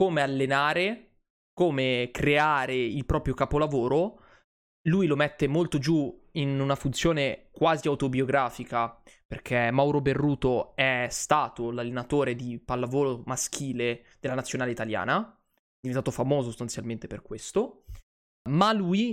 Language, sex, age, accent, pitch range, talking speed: Italian, male, 20-39, native, 125-150 Hz, 115 wpm